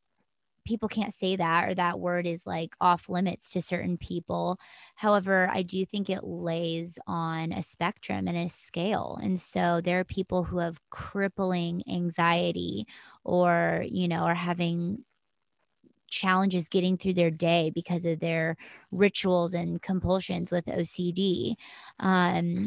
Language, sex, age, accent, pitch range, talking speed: English, female, 20-39, American, 170-195 Hz, 145 wpm